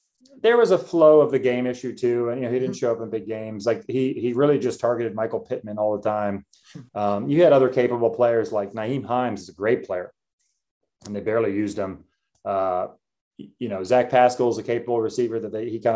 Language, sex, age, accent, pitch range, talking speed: English, male, 30-49, American, 115-155 Hz, 230 wpm